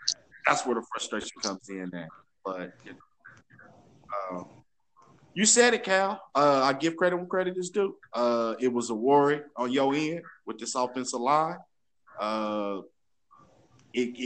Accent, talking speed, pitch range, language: American, 145 wpm, 105-125 Hz, English